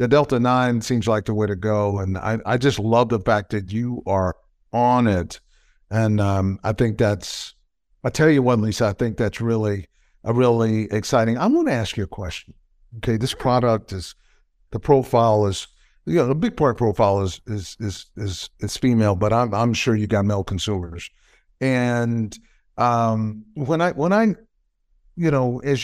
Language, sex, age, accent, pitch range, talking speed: English, male, 60-79, American, 105-130 Hz, 190 wpm